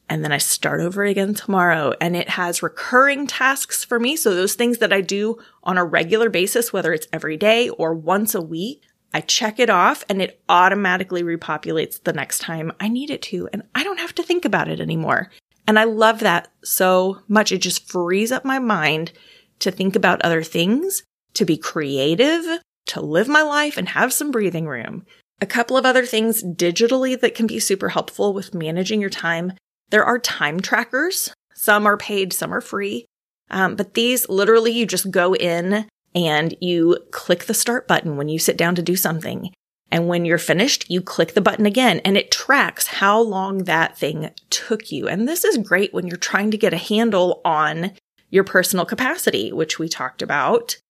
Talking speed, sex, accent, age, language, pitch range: 200 wpm, female, American, 20-39, English, 175-230 Hz